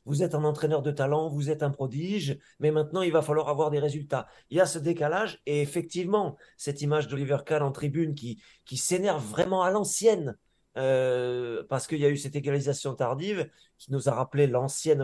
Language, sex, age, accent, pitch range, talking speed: French, male, 30-49, French, 130-165 Hz, 205 wpm